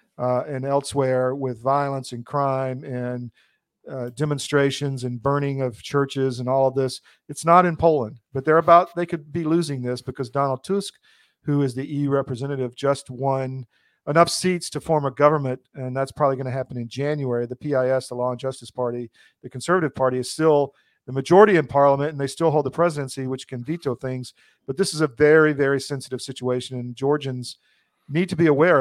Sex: male